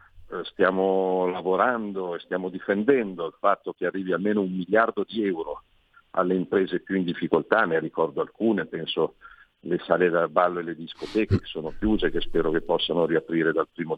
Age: 50-69